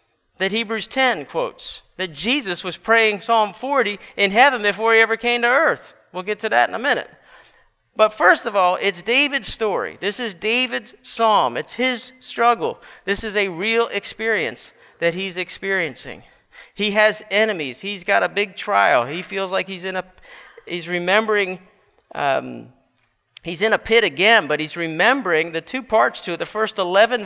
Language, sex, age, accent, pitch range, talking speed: English, male, 40-59, American, 165-220 Hz, 175 wpm